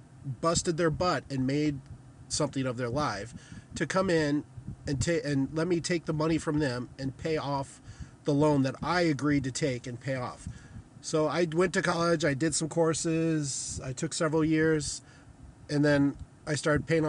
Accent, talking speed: American, 185 wpm